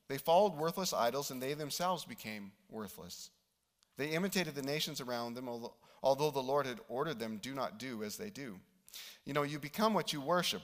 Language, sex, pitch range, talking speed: English, male, 145-200 Hz, 195 wpm